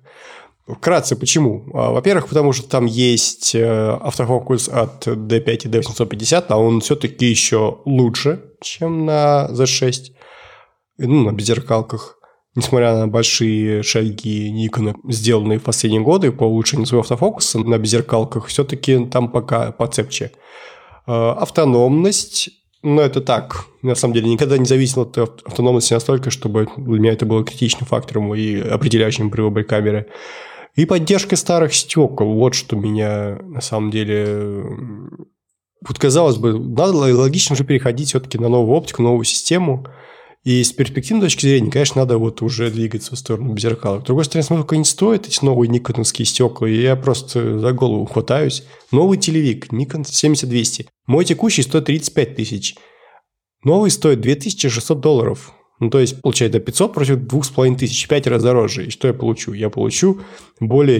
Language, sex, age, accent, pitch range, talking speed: Russian, male, 20-39, native, 115-140 Hz, 145 wpm